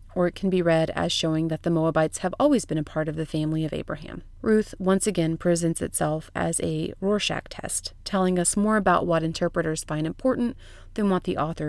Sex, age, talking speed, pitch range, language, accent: female, 30-49, 210 wpm, 160-200 Hz, English, American